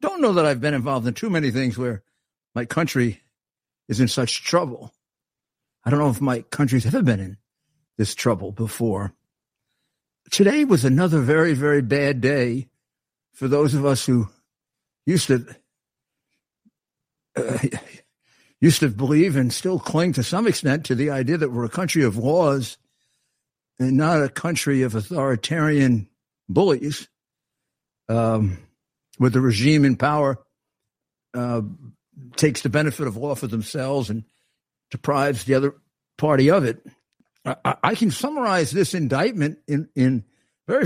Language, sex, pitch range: English, male, 125-150 Hz